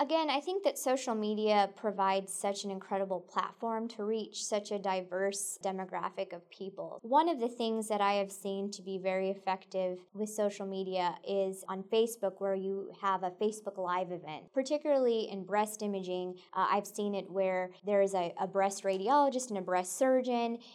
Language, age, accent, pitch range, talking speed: English, 20-39, American, 195-220 Hz, 180 wpm